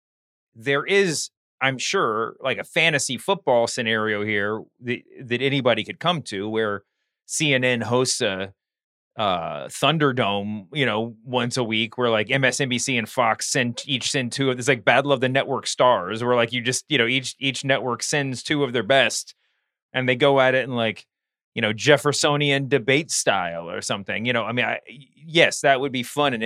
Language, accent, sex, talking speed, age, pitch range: English, American, male, 190 wpm, 30-49, 110-130 Hz